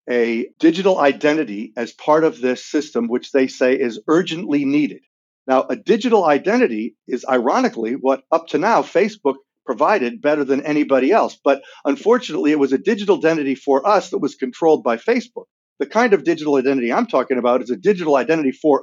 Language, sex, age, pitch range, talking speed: English, male, 50-69, 135-185 Hz, 180 wpm